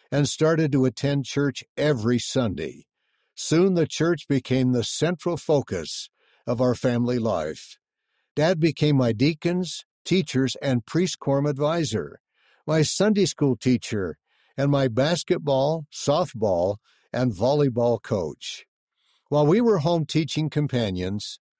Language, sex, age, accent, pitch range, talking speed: English, male, 60-79, American, 125-155 Hz, 120 wpm